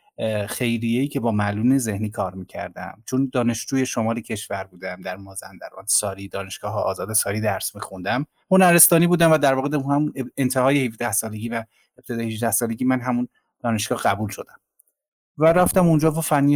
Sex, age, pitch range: male, 30-49, 110-145 Hz